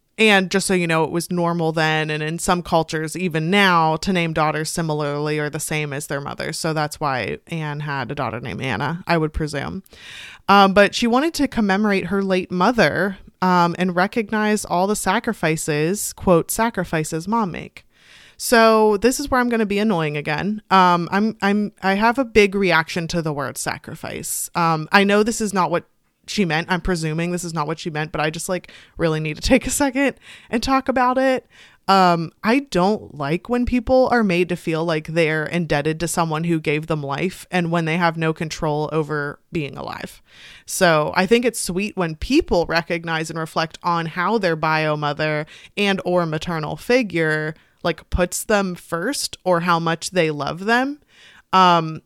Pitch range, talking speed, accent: 160-205 Hz, 190 wpm, American